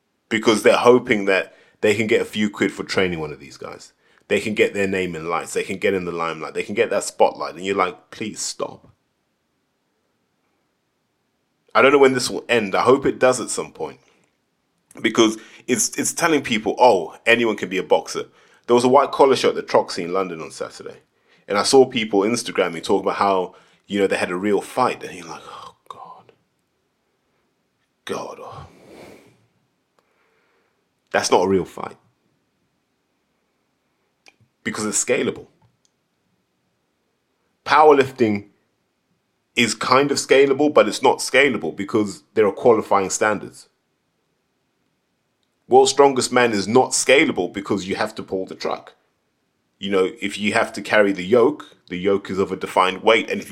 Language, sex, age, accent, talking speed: English, male, 20-39, British, 170 wpm